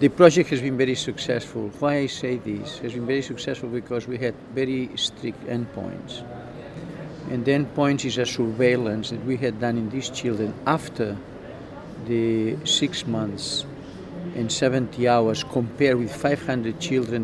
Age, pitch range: 50-69, 115-135 Hz